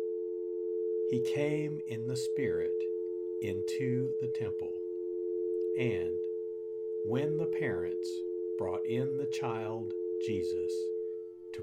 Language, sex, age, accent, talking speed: English, male, 60-79, American, 95 wpm